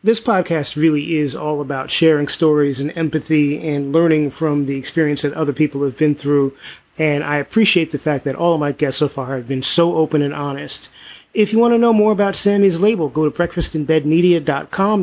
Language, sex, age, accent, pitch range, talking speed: English, male, 30-49, American, 155-190 Hz, 205 wpm